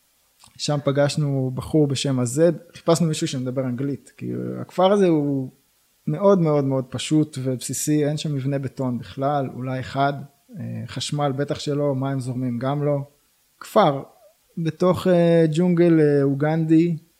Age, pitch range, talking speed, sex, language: 20-39, 130-155 Hz, 125 wpm, male, Hebrew